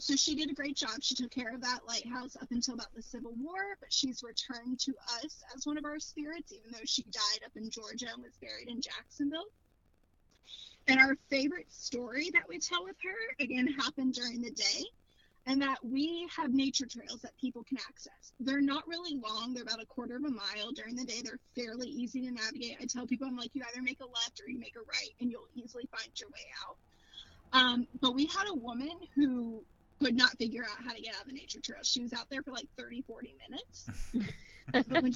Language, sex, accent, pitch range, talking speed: English, female, American, 245-290 Hz, 230 wpm